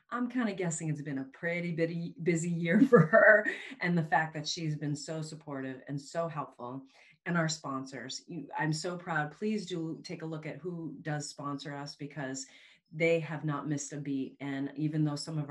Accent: American